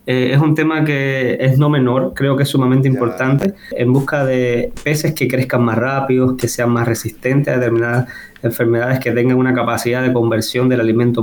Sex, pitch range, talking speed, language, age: male, 120-135 Hz, 190 wpm, Spanish, 20-39